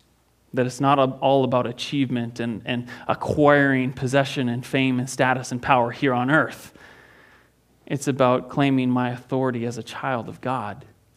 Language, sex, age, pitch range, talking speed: English, male, 30-49, 125-165 Hz, 155 wpm